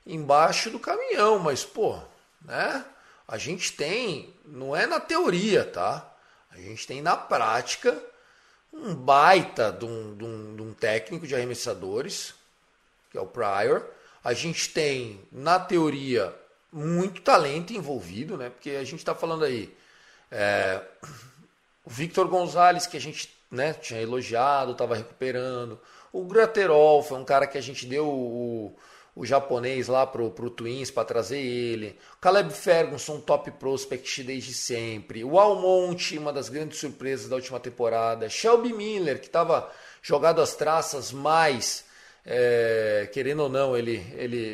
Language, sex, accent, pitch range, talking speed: Portuguese, male, Brazilian, 120-175 Hz, 145 wpm